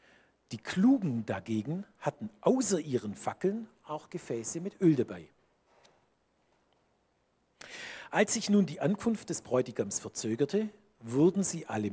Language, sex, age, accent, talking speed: German, male, 50-69, German, 115 wpm